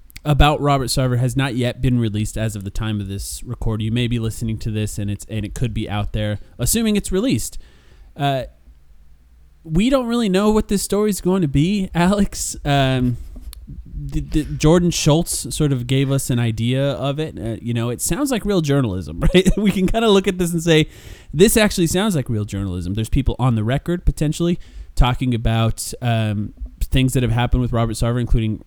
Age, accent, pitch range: 30-49, American, 110-150 Hz